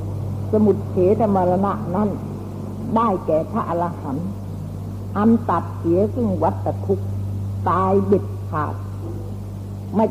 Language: Thai